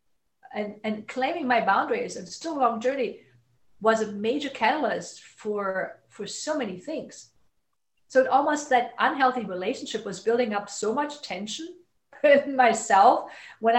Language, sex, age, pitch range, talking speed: English, female, 50-69, 200-255 Hz, 150 wpm